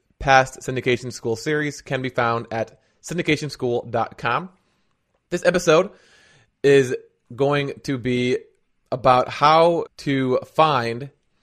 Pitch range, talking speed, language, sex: 120-135 Hz, 100 wpm, English, male